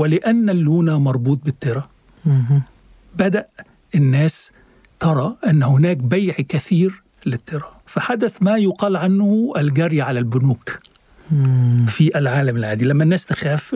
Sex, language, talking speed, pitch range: male, Arabic, 110 wpm, 135-185 Hz